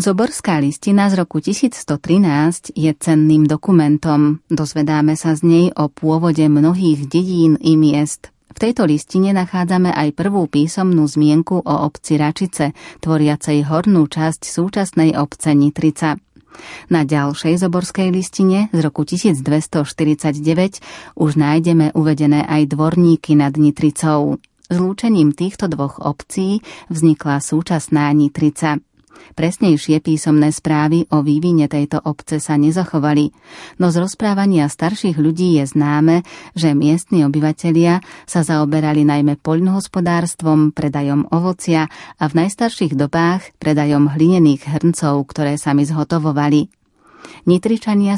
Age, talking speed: 30-49, 115 wpm